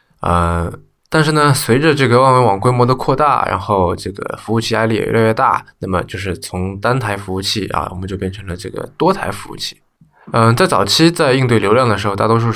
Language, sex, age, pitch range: Chinese, male, 20-39, 95-120 Hz